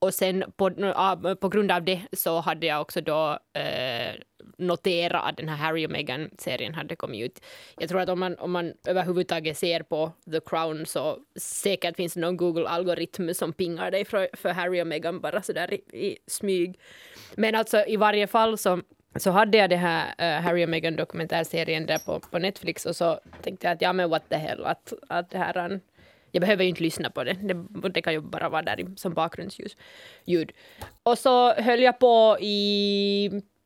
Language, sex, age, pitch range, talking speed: Swedish, female, 20-39, 170-205 Hz, 195 wpm